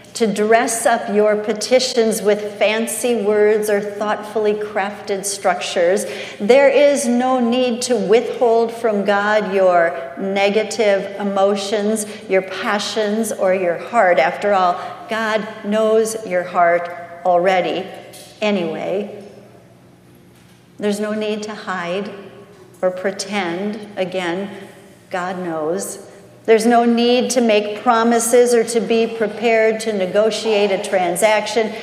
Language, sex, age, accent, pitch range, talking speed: English, female, 50-69, American, 180-225 Hz, 115 wpm